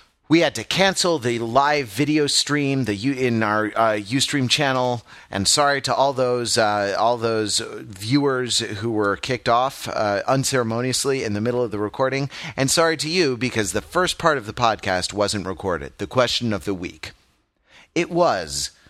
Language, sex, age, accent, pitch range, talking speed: English, male, 30-49, American, 110-145 Hz, 175 wpm